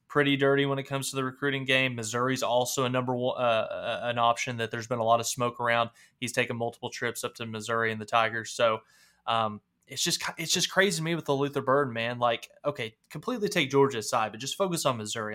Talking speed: 235 wpm